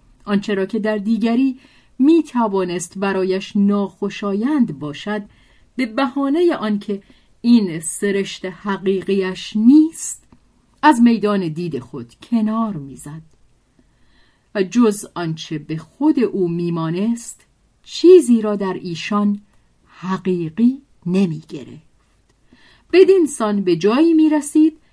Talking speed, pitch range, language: 95 wpm, 175-255 Hz, Persian